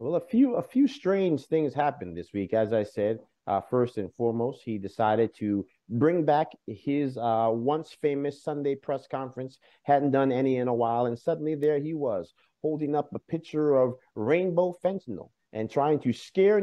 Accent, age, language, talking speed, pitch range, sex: American, 50-69, English, 180 wpm, 120-155 Hz, male